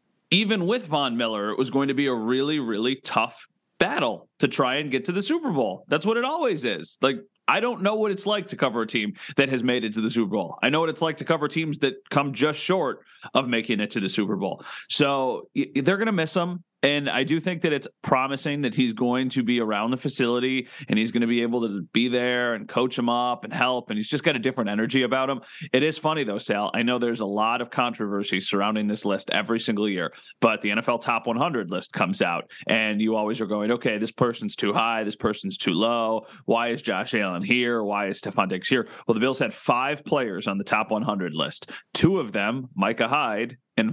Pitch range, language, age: 110-145 Hz, English, 30-49